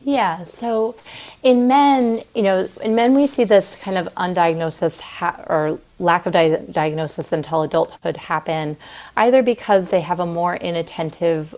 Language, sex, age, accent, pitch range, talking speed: English, female, 30-49, American, 160-185 Hz, 155 wpm